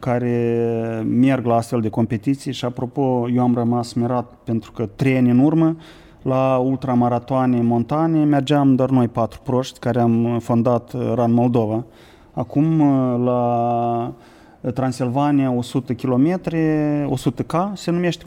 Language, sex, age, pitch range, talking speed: Romanian, male, 30-49, 120-155 Hz, 130 wpm